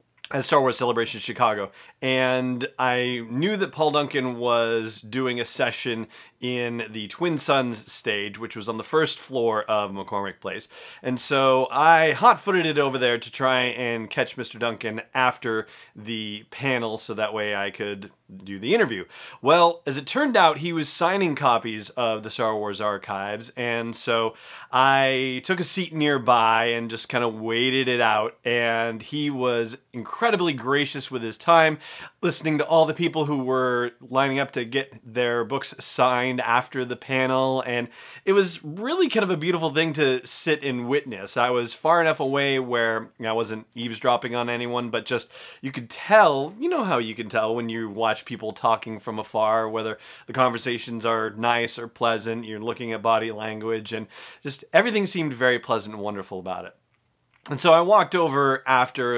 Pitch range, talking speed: 115-140 Hz, 180 wpm